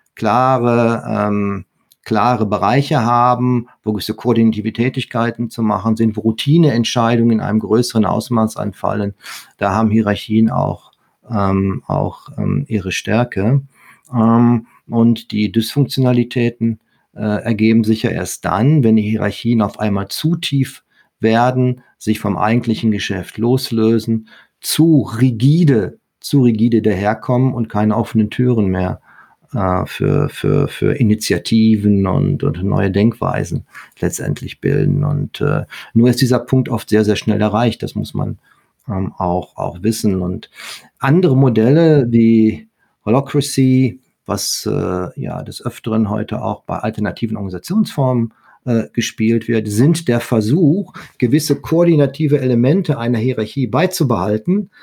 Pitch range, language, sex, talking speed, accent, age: 110-135 Hz, German, male, 125 wpm, German, 40-59